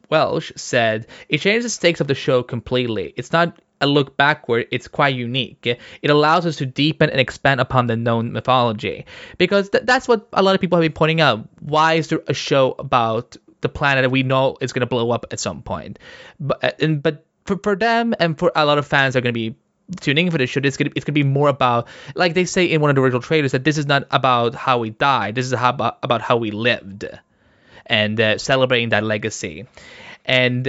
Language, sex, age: English, male, 20-39